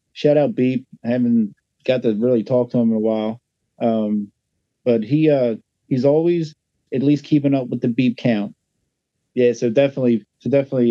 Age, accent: 30-49, American